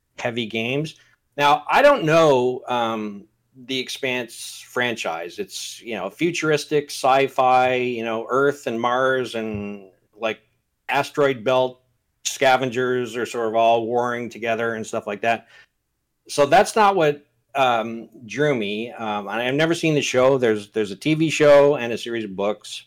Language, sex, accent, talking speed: English, male, American, 150 wpm